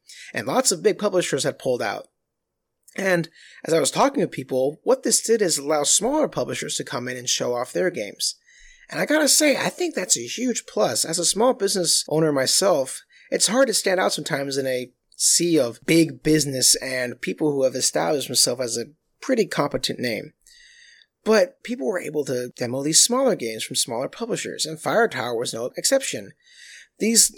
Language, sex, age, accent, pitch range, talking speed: English, male, 30-49, American, 130-185 Hz, 195 wpm